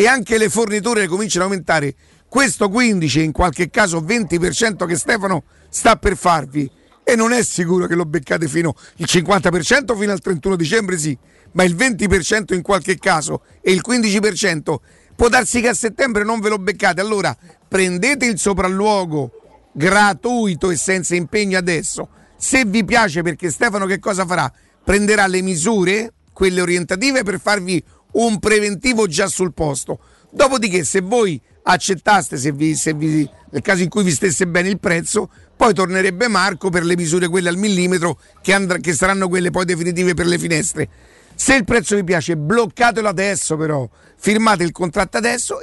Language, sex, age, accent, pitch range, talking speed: Italian, male, 50-69, native, 175-215 Hz, 165 wpm